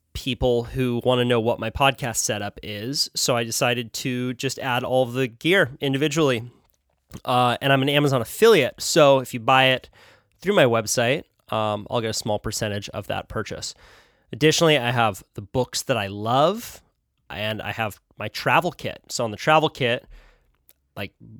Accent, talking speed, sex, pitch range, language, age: American, 175 wpm, male, 110-135 Hz, English, 20-39